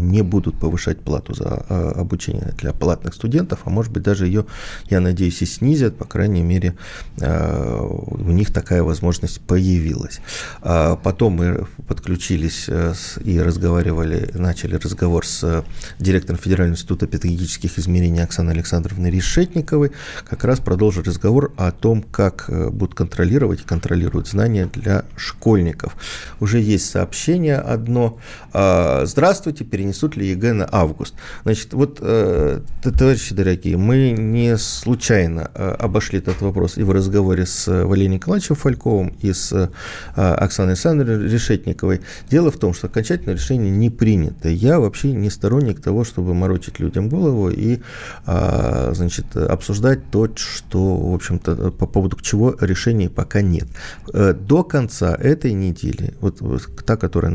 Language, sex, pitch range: Russian, male, 90-115 Hz